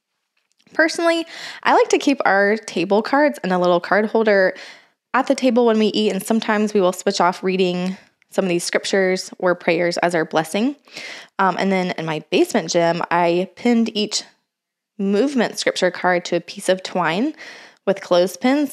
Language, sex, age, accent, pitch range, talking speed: English, female, 20-39, American, 180-230 Hz, 175 wpm